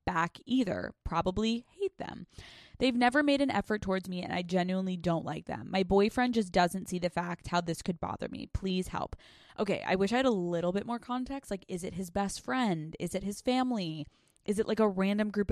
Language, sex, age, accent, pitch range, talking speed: English, female, 20-39, American, 170-215 Hz, 225 wpm